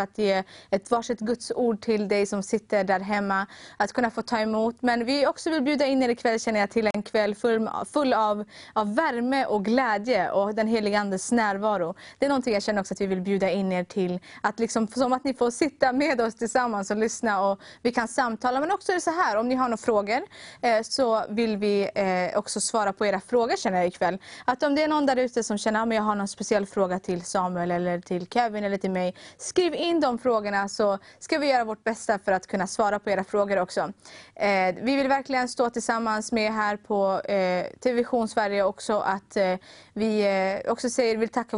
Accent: native